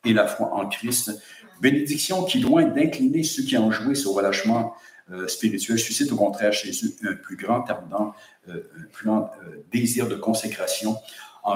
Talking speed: 180 wpm